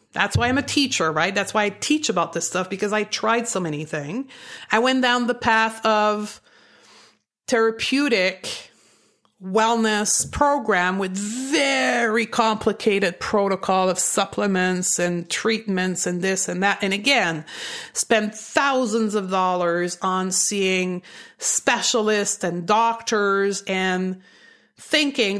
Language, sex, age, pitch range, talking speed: English, female, 30-49, 190-235 Hz, 125 wpm